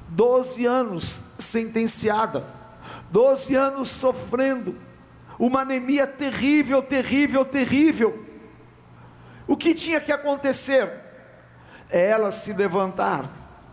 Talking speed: 85 wpm